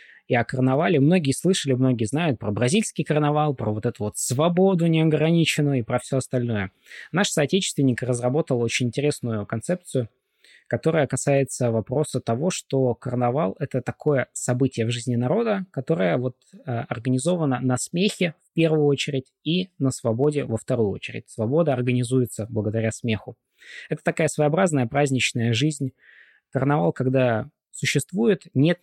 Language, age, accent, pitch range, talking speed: Russian, 20-39, native, 120-150 Hz, 135 wpm